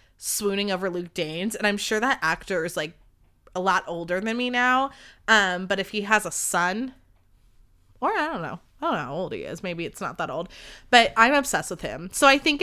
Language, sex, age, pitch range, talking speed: English, female, 20-39, 185-220 Hz, 230 wpm